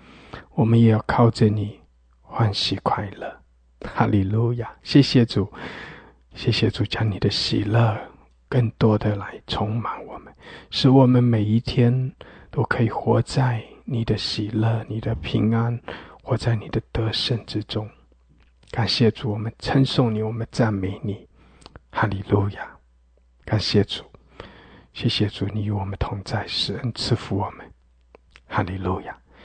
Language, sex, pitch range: English, male, 95-115 Hz